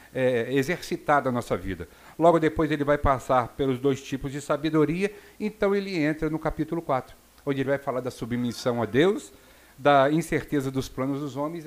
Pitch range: 125-165 Hz